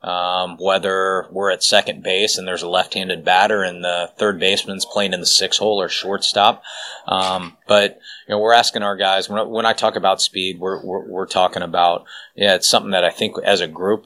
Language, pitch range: English, 95-105 Hz